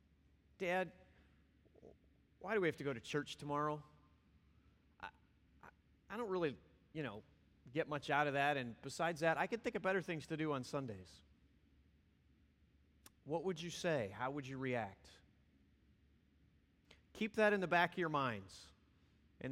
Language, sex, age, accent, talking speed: English, male, 30-49, American, 160 wpm